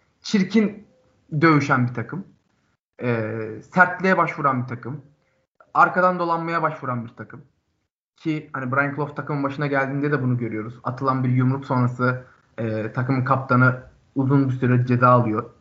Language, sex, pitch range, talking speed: Turkish, male, 125-170 Hz, 140 wpm